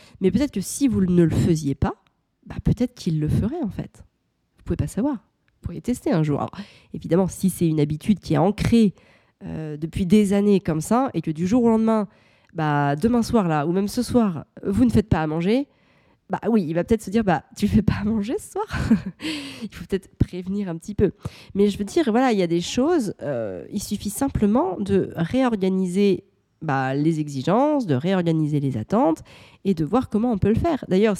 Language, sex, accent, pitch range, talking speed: French, female, French, 170-230 Hz, 225 wpm